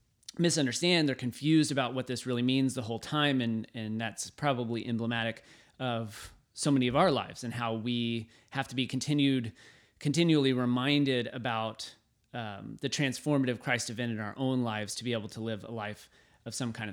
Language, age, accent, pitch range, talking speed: English, 30-49, American, 120-145 Hz, 180 wpm